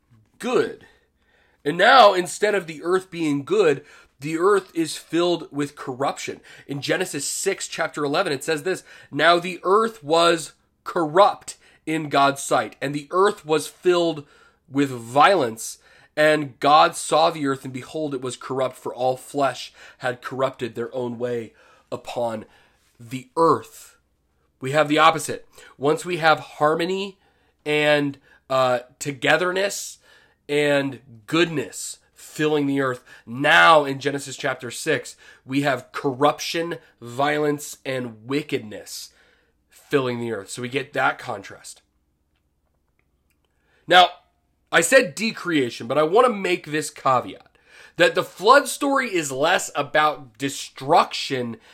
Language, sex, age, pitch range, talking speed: English, male, 30-49, 130-165 Hz, 130 wpm